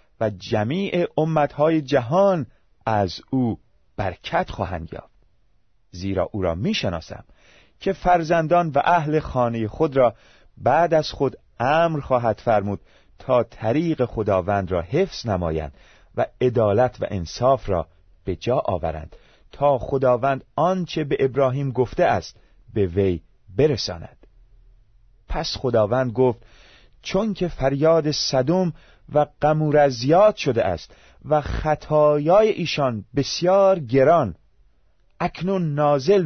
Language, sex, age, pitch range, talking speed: Persian, male, 40-59, 100-155 Hz, 115 wpm